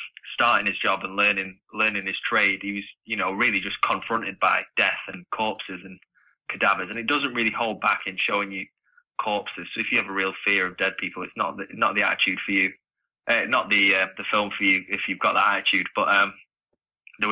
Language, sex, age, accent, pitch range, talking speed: English, male, 20-39, British, 95-110 Hz, 225 wpm